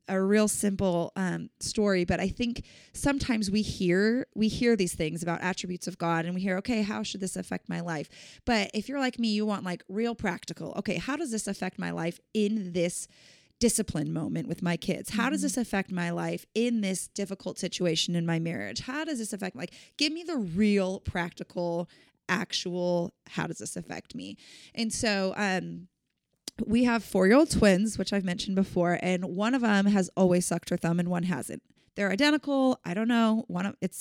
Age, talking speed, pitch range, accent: 20-39, 200 wpm, 180-225 Hz, American